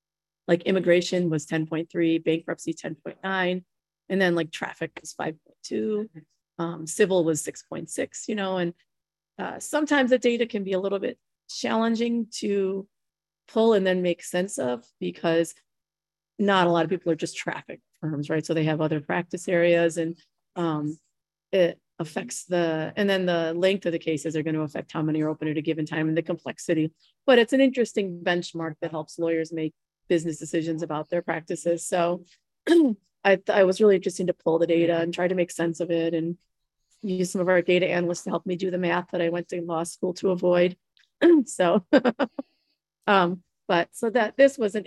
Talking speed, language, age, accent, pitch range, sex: 185 wpm, English, 30-49, American, 165-195 Hz, female